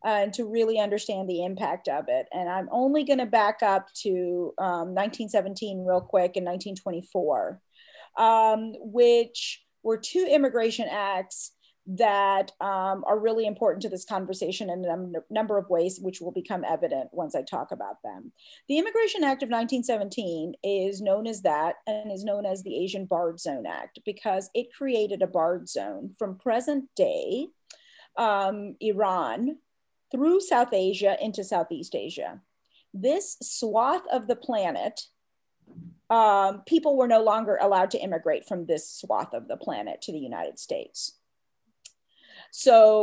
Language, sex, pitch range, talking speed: English, female, 190-245 Hz, 155 wpm